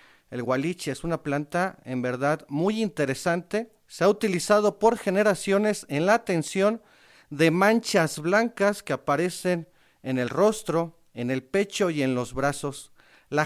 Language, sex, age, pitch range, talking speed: Spanish, male, 40-59, 150-210 Hz, 145 wpm